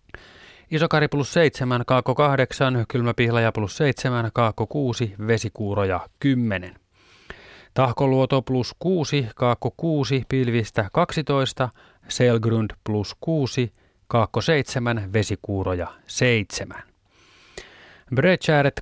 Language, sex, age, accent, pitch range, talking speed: Finnish, male, 30-49, native, 105-135 Hz, 85 wpm